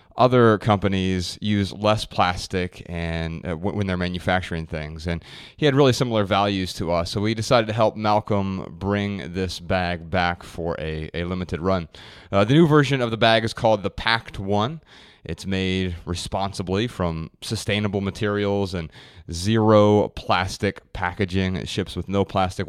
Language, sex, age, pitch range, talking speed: English, male, 30-49, 90-110 Hz, 160 wpm